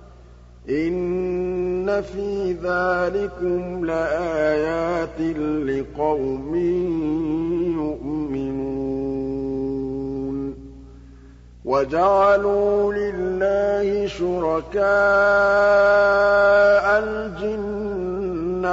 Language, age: Arabic, 50-69